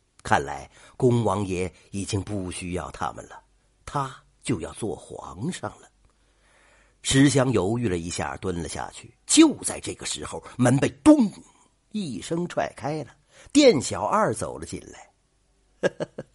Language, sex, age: Chinese, male, 50-69